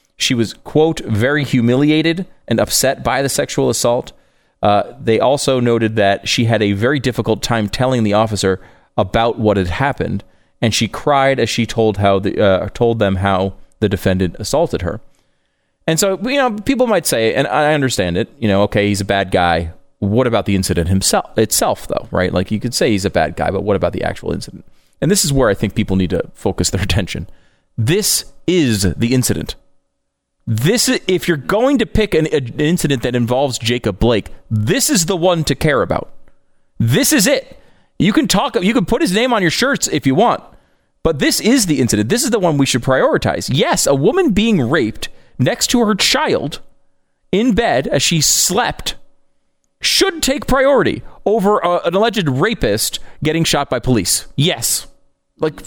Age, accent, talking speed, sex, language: 30-49, American, 190 wpm, male, English